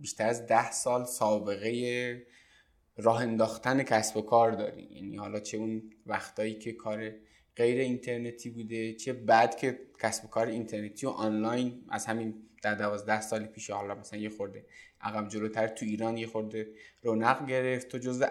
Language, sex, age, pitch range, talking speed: Persian, male, 20-39, 110-125 Hz, 165 wpm